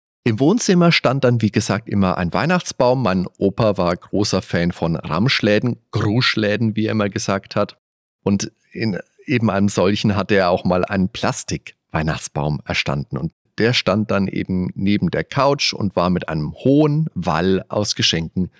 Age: 40-59